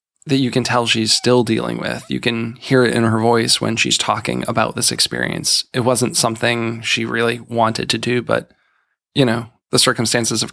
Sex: male